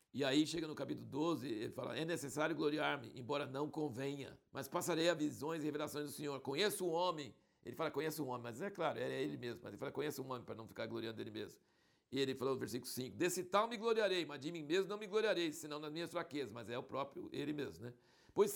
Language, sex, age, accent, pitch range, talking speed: Portuguese, male, 60-79, Brazilian, 135-180 Hz, 250 wpm